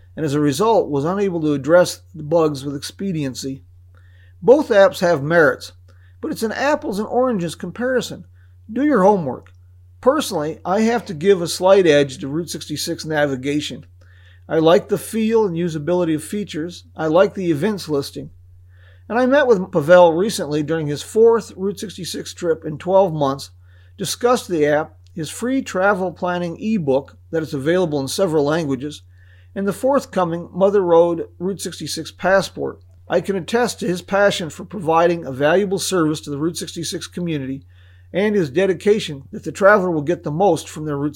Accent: American